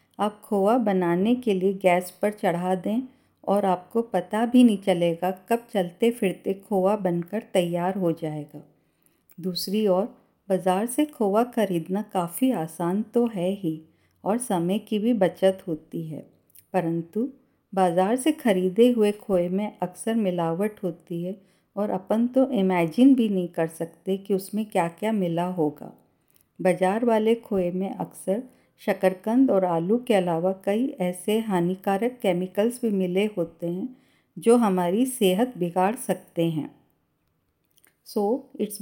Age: 50-69